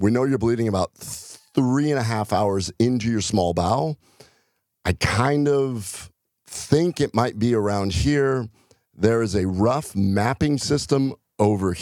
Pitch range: 100-120 Hz